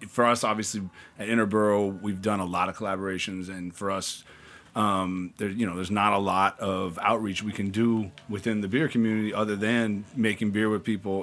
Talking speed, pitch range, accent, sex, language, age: 200 wpm, 100-110 Hz, American, male, English, 30-49